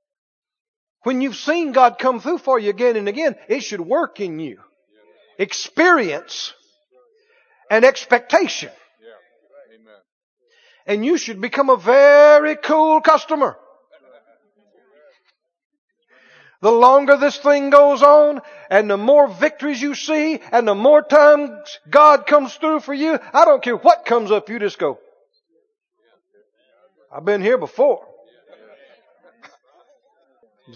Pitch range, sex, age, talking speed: 260-345 Hz, male, 50-69, 120 wpm